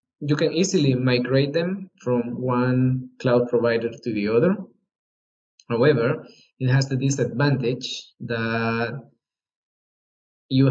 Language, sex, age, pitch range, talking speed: English, male, 20-39, 120-140 Hz, 105 wpm